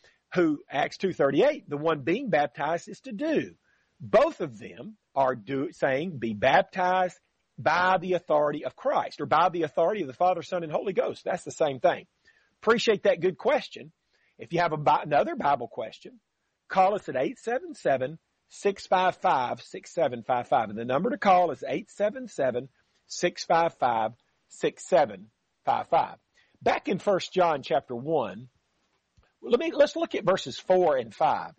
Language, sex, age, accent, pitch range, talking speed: English, male, 40-59, American, 155-215 Hz, 140 wpm